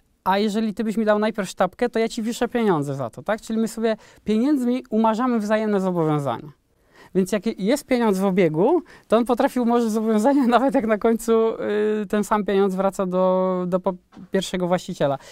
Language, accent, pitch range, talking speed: Polish, native, 175-220 Hz, 180 wpm